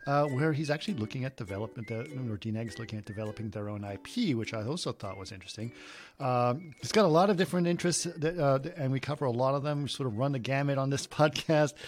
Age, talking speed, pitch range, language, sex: 40-59, 250 wpm, 110-140 Hz, English, male